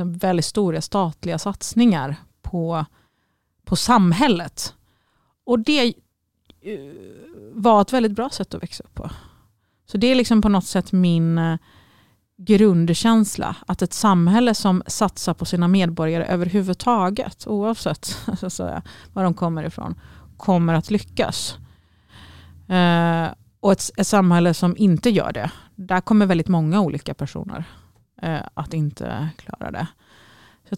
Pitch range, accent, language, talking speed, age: 150-200 Hz, Swedish, English, 120 wpm, 30-49